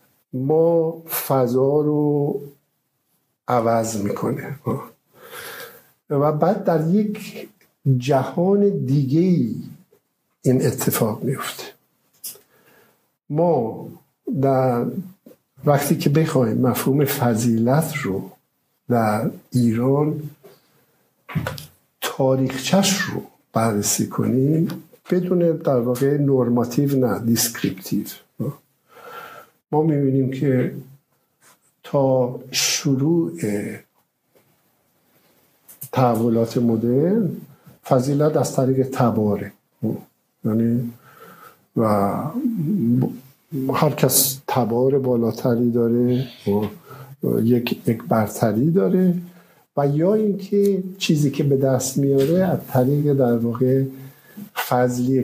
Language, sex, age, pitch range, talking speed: Persian, male, 60-79, 120-155 Hz, 75 wpm